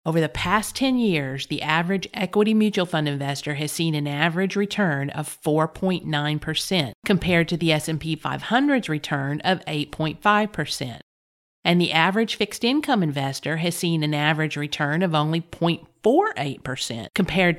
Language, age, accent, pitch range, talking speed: English, 50-69, American, 150-195 Hz, 140 wpm